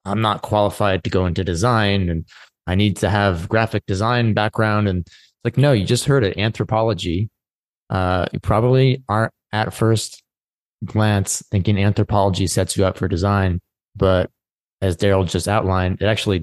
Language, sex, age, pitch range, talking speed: English, male, 20-39, 95-110 Hz, 165 wpm